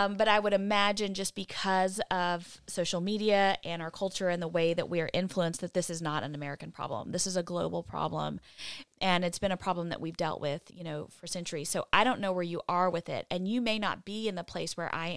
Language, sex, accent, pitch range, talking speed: English, female, American, 170-210 Hz, 255 wpm